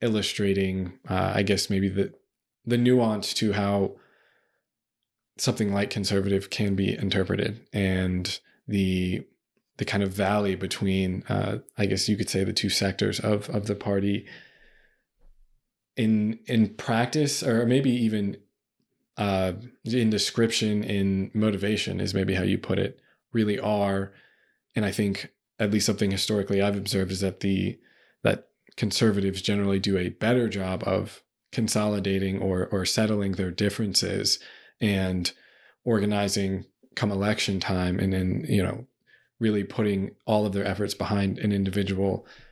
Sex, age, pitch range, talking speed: male, 20-39, 95-110 Hz, 140 wpm